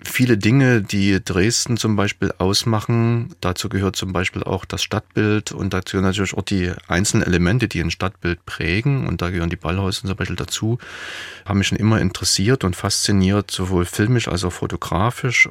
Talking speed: 175 wpm